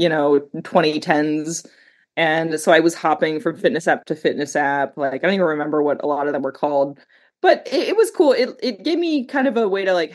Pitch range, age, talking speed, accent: 150-205 Hz, 20-39, 240 wpm, American